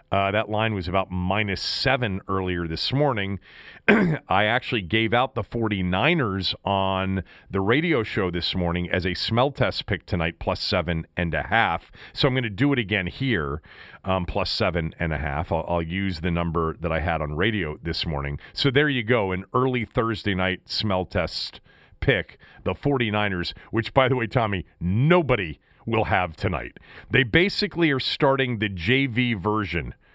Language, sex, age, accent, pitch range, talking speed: English, male, 40-59, American, 95-125 Hz, 175 wpm